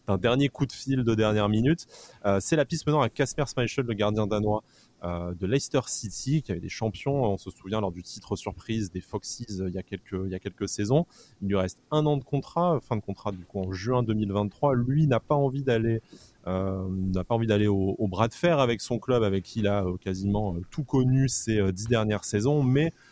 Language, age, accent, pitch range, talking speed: French, 20-39, French, 100-130 Hz, 235 wpm